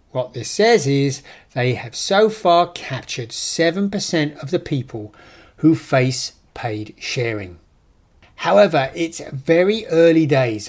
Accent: British